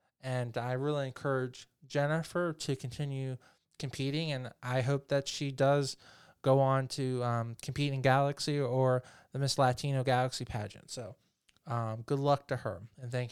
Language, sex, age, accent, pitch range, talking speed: English, male, 20-39, American, 125-150 Hz, 160 wpm